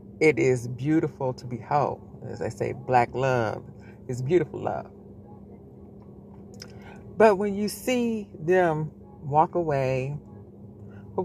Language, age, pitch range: English, 40-59, 105-150 Hz